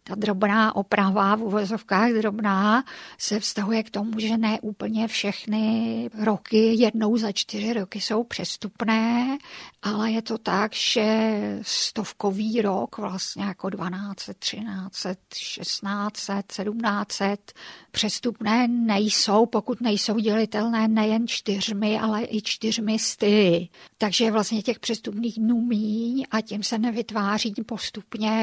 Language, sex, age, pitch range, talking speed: Czech, female, 50-69, 205-225 Hz, 115 wpm